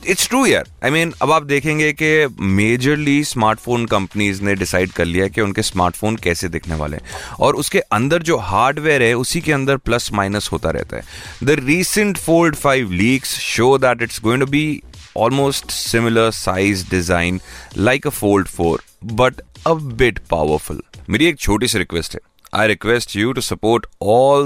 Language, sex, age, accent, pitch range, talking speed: Hindi, male, 30-49, native, 100-140 Hz, 170 wpm